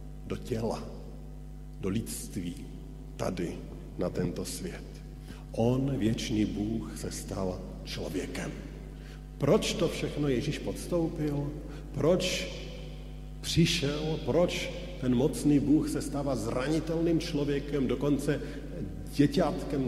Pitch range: 125-160 Hz